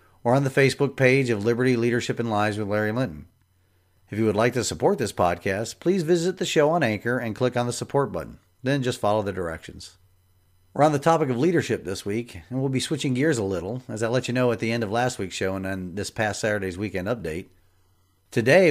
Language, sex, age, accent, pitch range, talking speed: English, male, 40-59, American, 95-130 Hz, 235 wpm